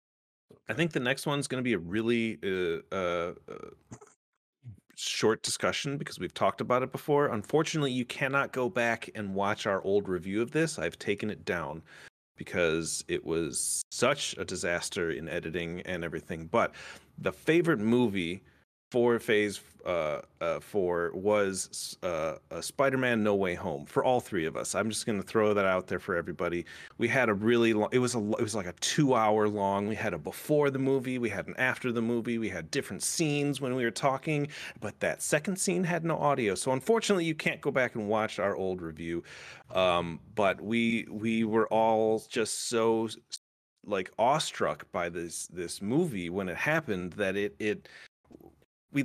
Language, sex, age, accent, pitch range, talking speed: English, male, 30-49, American, 105-140 Hz, 185 wpm